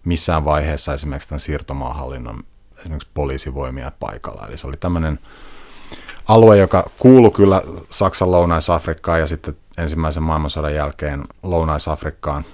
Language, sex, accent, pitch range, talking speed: Finnish, male, native, 75-90 Hz, 115 wpm